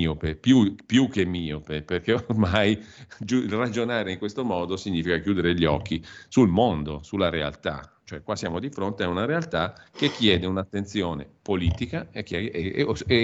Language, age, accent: Italian, 50-69, native